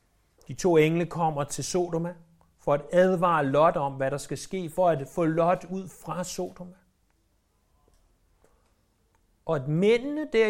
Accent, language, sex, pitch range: native, Danish, male, 115-165 Hz